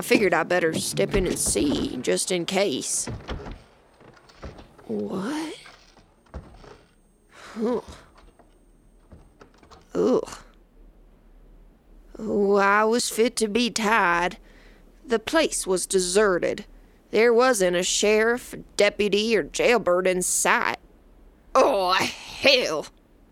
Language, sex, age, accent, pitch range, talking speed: English, female, 20-39, American, 185-230 Hz, 90 wpm